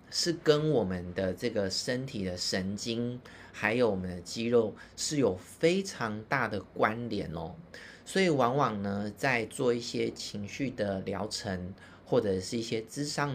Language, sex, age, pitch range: Chinese, male, 30-49, 95-135 Hz